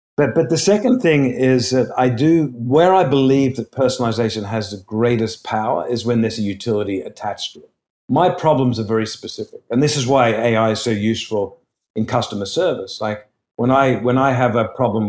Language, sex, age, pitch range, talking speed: English, male, 50-69, 110-135 Hz, 200 wpm